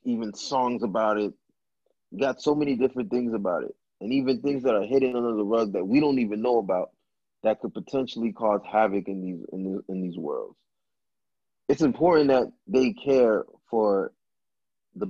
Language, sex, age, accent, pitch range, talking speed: English, male, 20-39, American, 110-145 Hz, 175 wpm